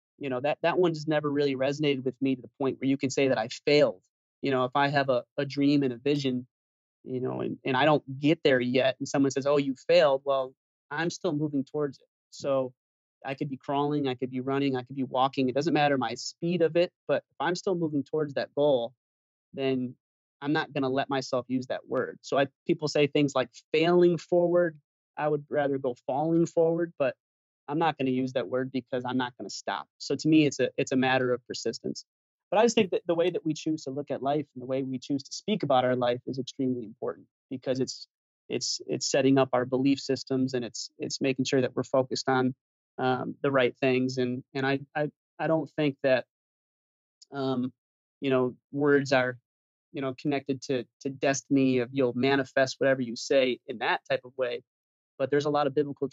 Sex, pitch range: male, 130-145 Hz